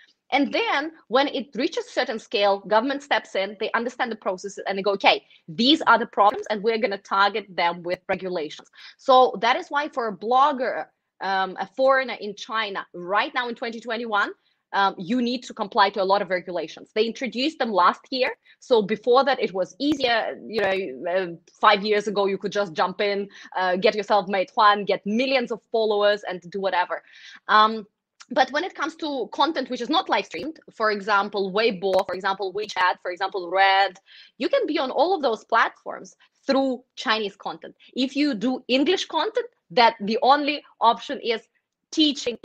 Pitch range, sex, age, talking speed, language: 200-265 Hz, female, 20-39, 190 wpm, Italian